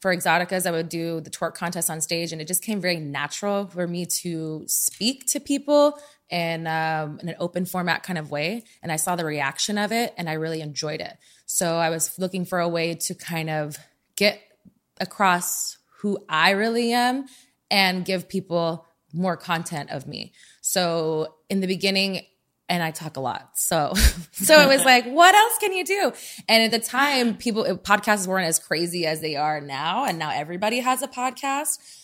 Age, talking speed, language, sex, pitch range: 20-39, 195 wpm, English, female, 160-200 Hz